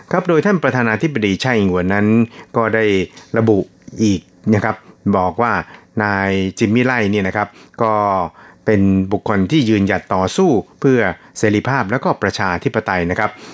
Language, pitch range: Thai, 95-110 Hz